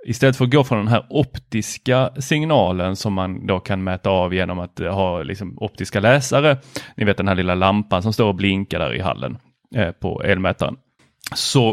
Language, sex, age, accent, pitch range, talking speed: Swedish, male, 30-49, native, 105-140 Hz, 185 wpm